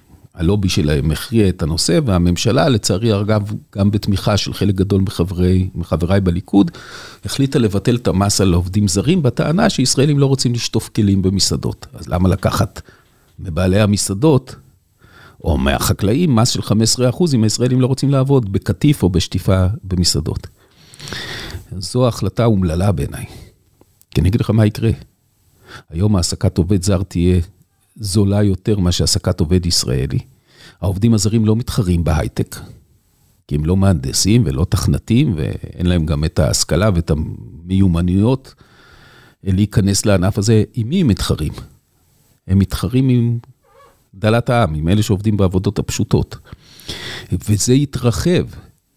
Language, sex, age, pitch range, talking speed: Hebrew, male, 50-69, 95-120 Hz, 130 wpm